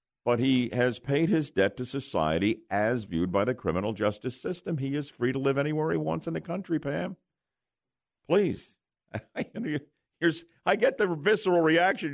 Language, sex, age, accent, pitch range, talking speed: English, male, 50-69, American, 125-175 Hz, 165 wpm